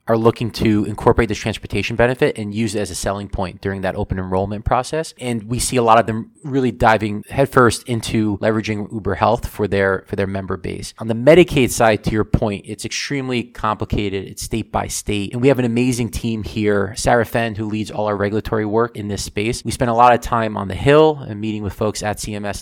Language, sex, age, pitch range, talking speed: English, male, 20-39, 100-120 Hz, 230 wpm